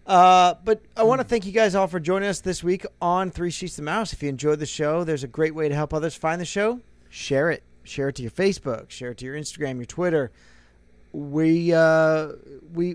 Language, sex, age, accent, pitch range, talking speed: English, male, 30-49, American, 140-180 Hz, 240 wpm